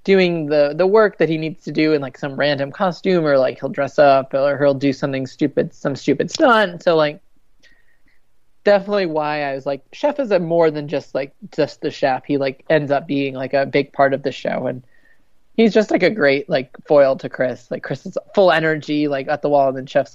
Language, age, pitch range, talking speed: English, 20-39, 140-160 Hz, 235 wpm